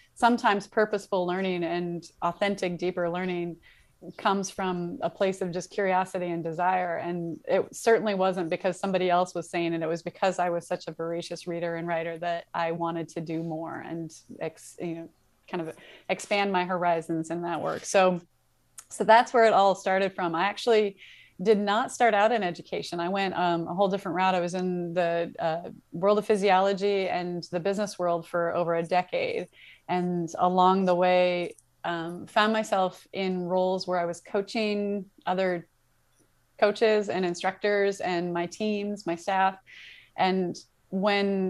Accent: American